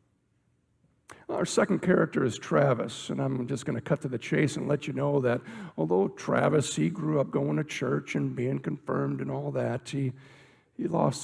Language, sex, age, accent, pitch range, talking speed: English, male, 50-69, American, 125-155 Hz, 190 wpm